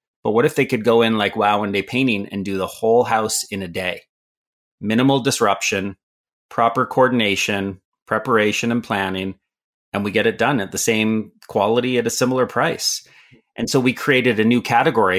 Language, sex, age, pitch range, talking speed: English, male, 30-49, 100-125 Hz, 185 wpm